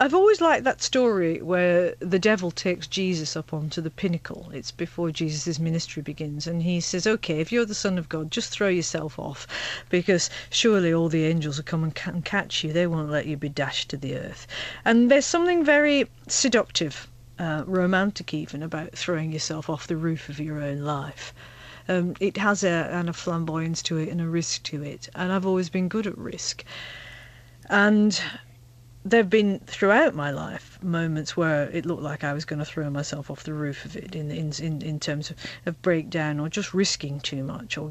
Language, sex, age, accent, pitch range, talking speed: English, female, 40-59, British, 150-195 Hz, 200 wpm